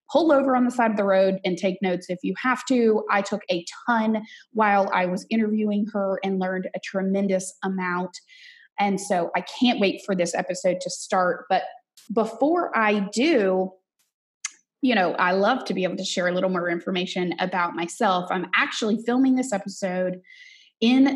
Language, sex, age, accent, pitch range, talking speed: English, female, 20-39, American, 185-230 Hz, 180 wpm